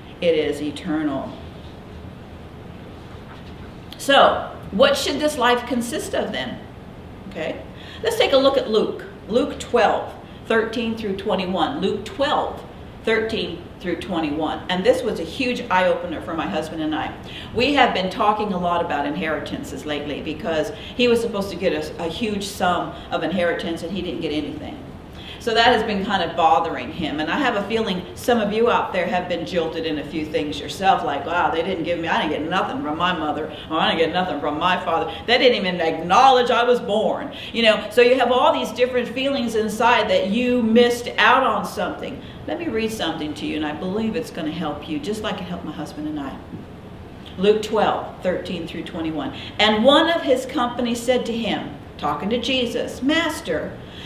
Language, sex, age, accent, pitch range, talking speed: English, female, 50-69, American, 165-240 Hz, 195 wpm